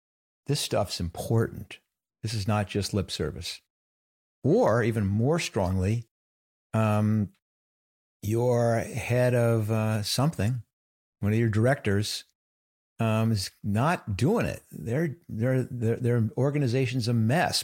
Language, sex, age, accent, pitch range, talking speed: English, male, 50-69, American, 100-130 Hz, 110 wpm